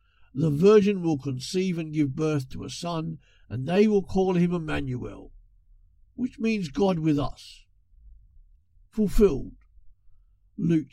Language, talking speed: English, 125 wpm